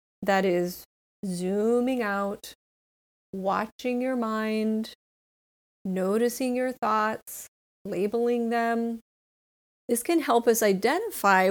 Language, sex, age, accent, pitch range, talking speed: English, female, 30-49, American, 190-245 Hz, 90 wpm